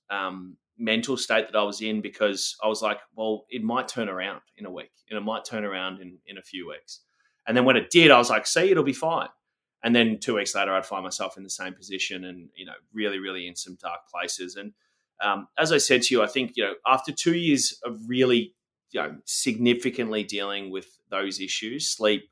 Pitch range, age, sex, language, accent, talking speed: 95-115 Hz, 20-39, male, English, Australian, 230 wpm